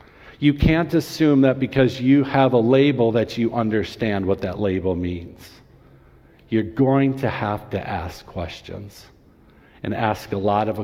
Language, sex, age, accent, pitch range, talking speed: English, male, 50-69, American, 95-140 Hz, 155 wpm